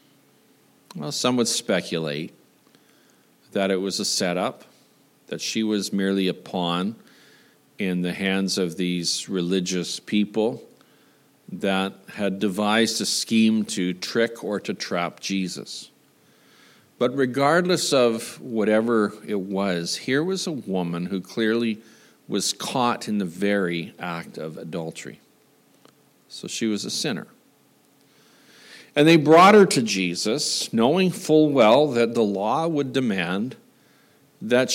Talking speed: 125 wpm